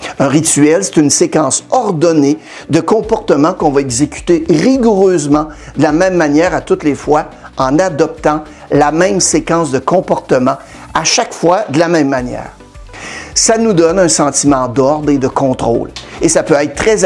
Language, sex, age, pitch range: French, male, 60-79, 140-185 Hz